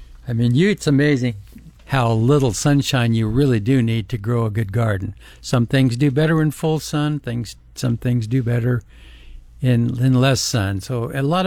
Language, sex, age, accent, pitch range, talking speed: English, male, 60-79, American, 110-145 Hz, 190 wpm